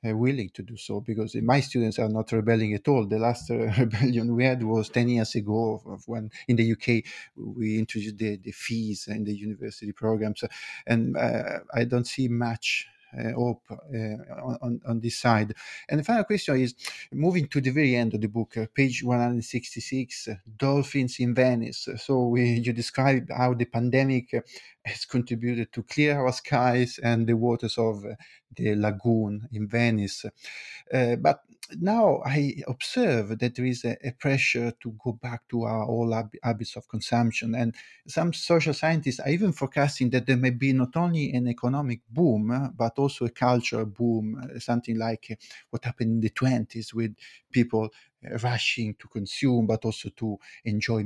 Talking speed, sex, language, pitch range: 170 wpm, male, English, 115-130 Hz